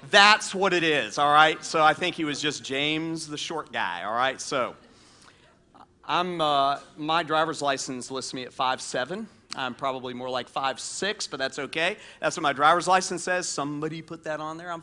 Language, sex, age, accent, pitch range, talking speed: English, male, 40-59, American, 135-180 Hz, 195 wpm